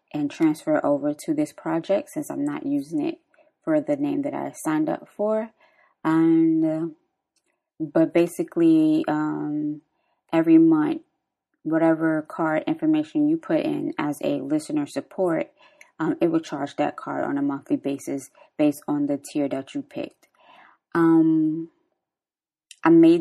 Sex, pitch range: female, 285-320 Hz